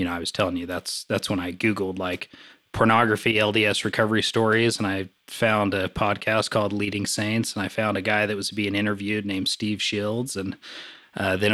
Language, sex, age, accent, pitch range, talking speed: English, male, 20-39, American, 105-125 Hz, 205 wpm